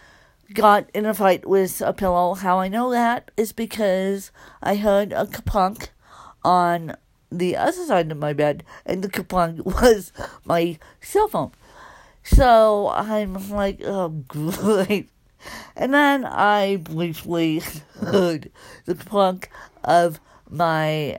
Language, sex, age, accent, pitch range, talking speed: English, female, 50-69, American, 165-205 Hz, 125 wpm